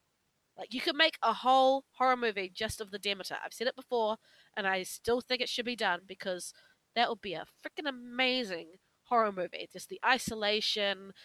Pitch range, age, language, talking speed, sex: 195-240 Hz, 20-39, English, 190 wpm, female